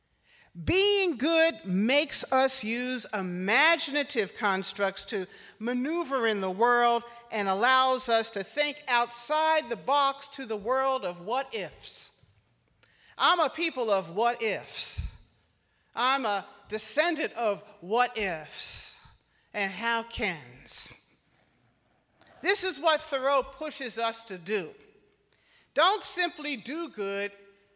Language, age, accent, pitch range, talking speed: English, 50-69, American, 195-275 Hz, 110 wpm